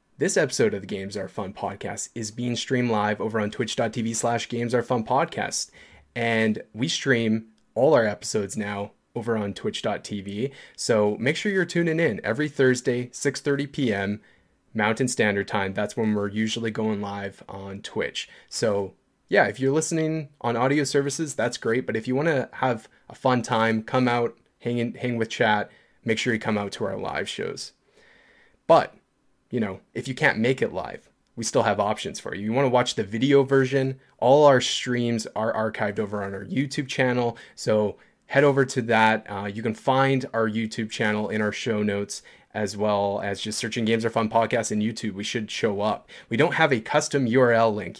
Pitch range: 105-130 Hz